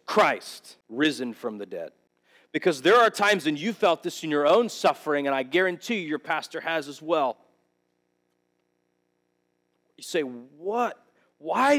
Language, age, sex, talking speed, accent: English, 40-59, male, 150 wpm, American